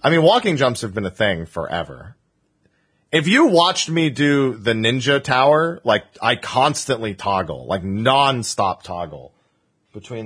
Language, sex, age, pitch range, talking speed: English, male, 30-49, 105-150 Hz, 145 wpm